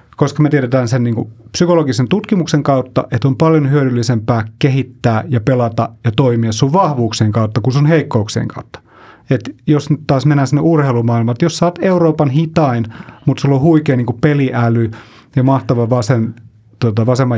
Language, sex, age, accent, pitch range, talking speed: Finnish, male, 30-49, native, 120-155 Hz, 160 wpm